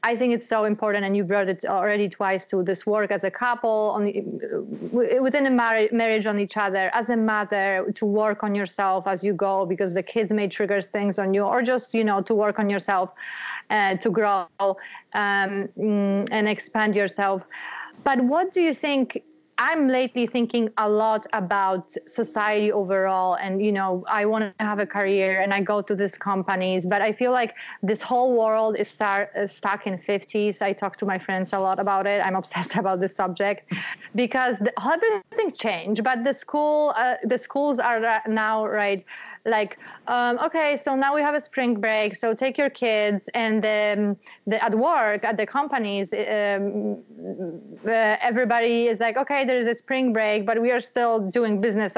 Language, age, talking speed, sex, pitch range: English, 30-49, 185 wpm, female, 200-235 Hz